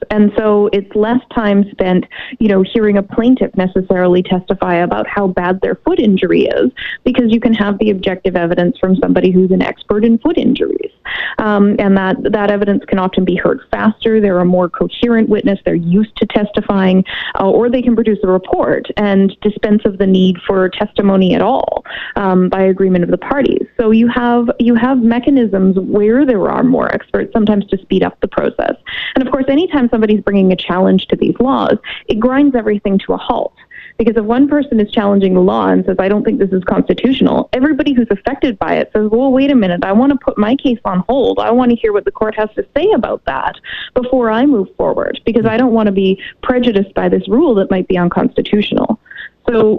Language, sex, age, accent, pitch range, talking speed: English, female, 20-39, American, 195-245 Hz, 210 wpm